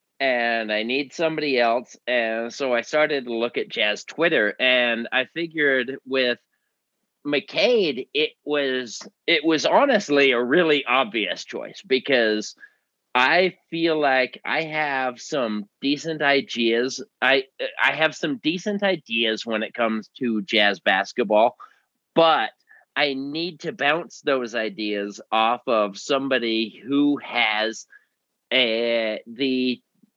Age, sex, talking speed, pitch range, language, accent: 30-49, male, 125 wpm, 120-160 Hz, English, American